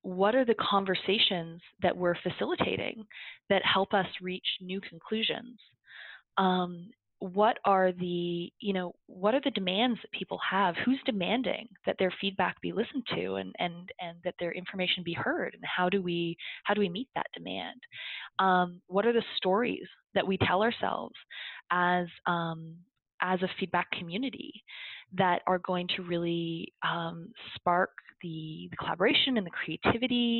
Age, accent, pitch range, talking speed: 20-39, American, 175-220 Hz, 155 wpm